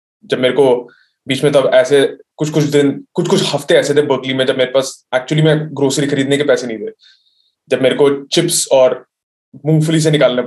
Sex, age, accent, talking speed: male, 20-39, native, 205 wpm